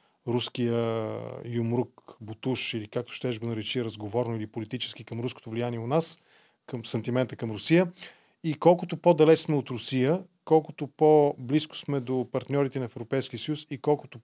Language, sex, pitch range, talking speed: Bulgarian, male, 125-155 Hz, 150 wpm